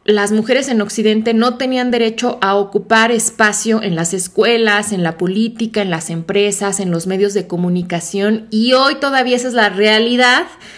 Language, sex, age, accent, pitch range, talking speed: Spanish, female, 20-39, Mexican, 200-245 Hz, 175 wpm